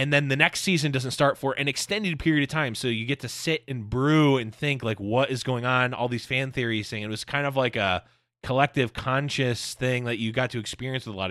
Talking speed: 260 wpm